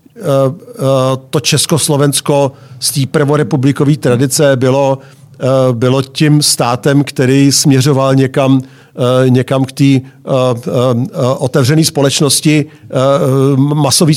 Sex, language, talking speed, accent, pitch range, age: male, Czech, 80 wpm, native, 130-150 Hz, 50-69